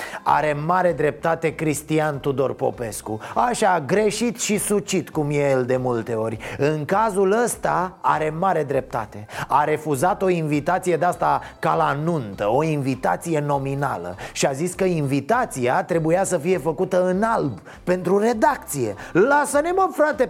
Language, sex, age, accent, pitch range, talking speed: Romanian, male, 30-49, native, 155-220 Hz, 145 wpm